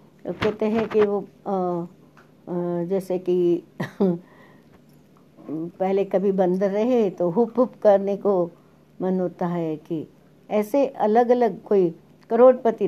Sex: female